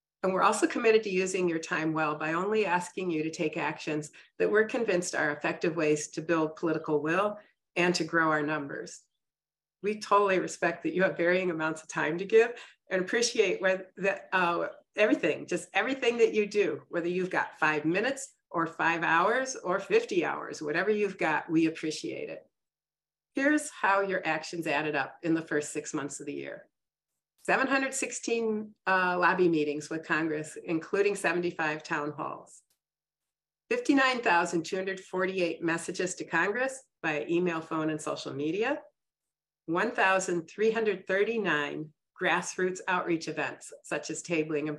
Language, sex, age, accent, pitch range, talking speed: English, female, 40-59, American, 160-215 Hz, 150 wpm